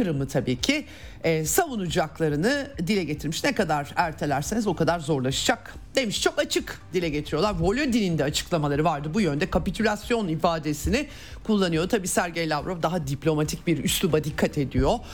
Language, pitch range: Turkish, 160-220 Hz